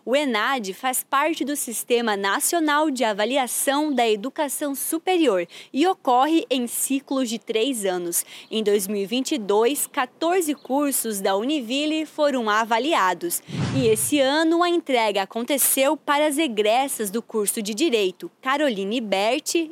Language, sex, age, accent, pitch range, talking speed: Portuguese, female, 20-39, Brazilian, 225-300 Hz, 130 wpm